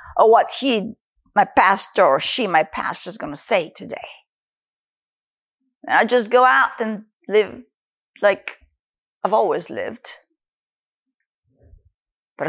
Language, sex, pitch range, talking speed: English, female, 210-305 Hz, 125 wpm